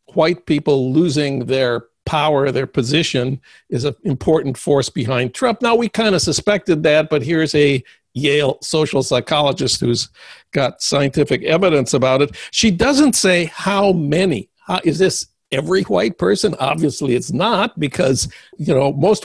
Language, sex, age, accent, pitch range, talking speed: English, male, 60-79, American, 135-190 Hz, 155 wpm